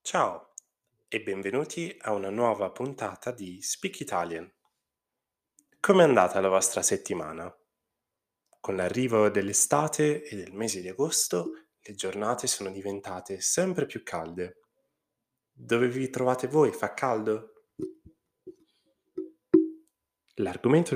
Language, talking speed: Italian, 110 wpm